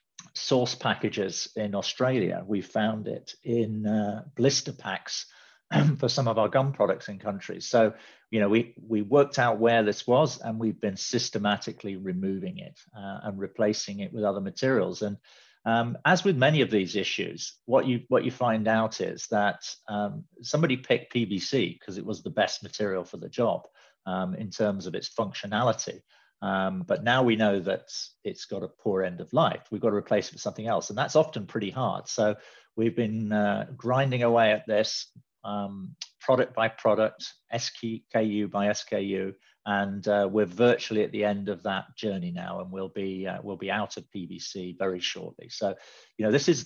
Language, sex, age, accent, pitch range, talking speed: English, male, 40-59, British, 100-120 Hz, 185 wpm